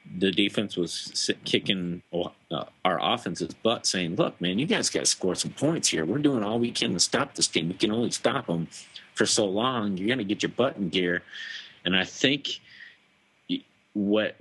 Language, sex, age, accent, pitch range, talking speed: English, male, 40-59, American, 90-105 Hz, 195 wpm